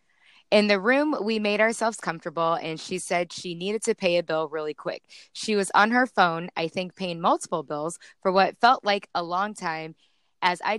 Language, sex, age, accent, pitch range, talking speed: English, female, 20-39, American, 170-215 Hz, 205 wpm